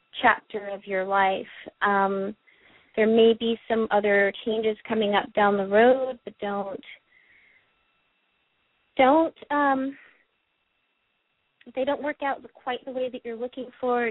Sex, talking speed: female, 130 wpm